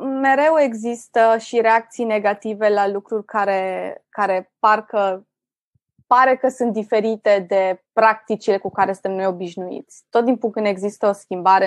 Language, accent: Romanian, native